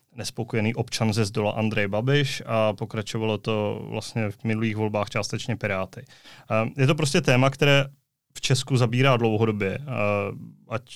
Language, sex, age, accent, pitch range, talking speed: Czech, male, 20-39, native, 110-125 Hz, 135 wpm